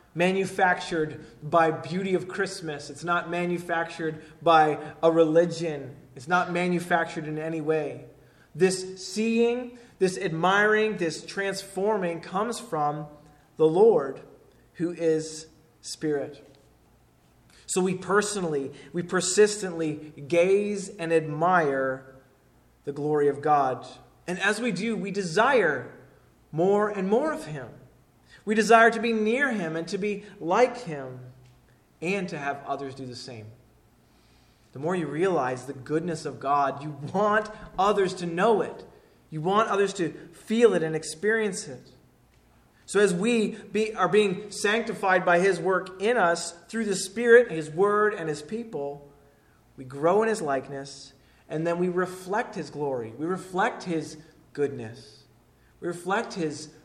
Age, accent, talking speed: 20-39, American, 140 wpm